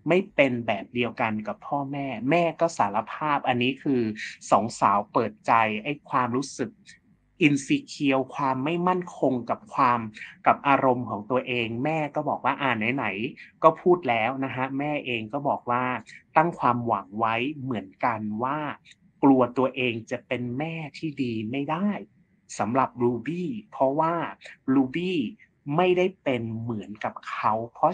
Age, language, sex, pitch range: 30-49, Thai, male, 120-165 Hz